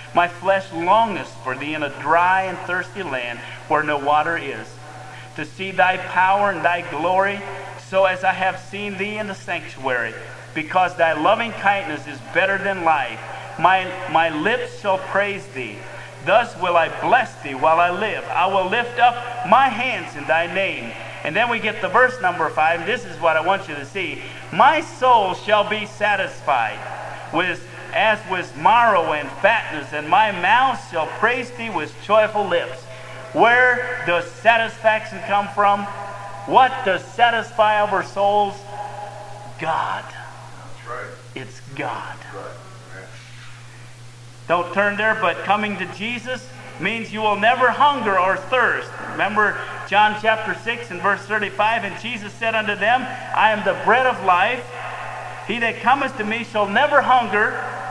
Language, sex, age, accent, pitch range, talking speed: English, male, 40-59, American, 150-215 Hz, 160 wpm